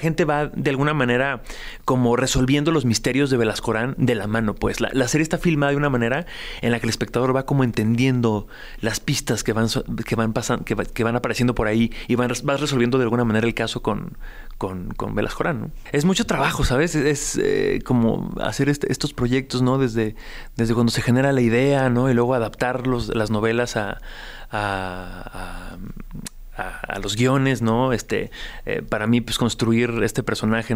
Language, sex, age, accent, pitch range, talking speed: Spanish, male, 30-49, Mexican, 110-130 Hz, 205 wpm